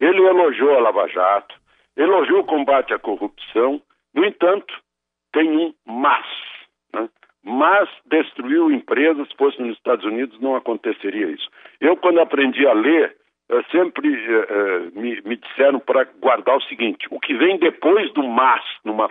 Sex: male